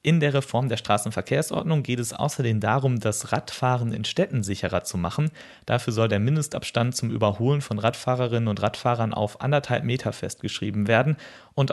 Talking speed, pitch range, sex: 165 wpm, 105-135 Hz, male